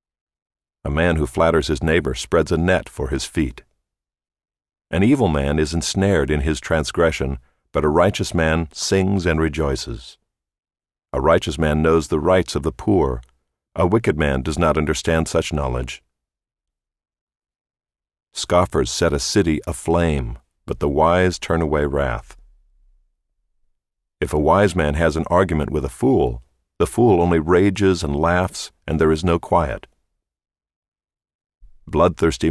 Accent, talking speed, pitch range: American, 140 wpm, 70-90 Hz